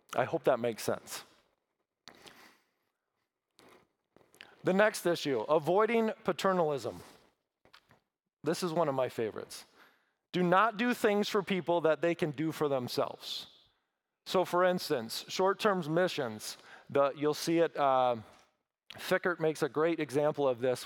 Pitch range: 145-185 Hz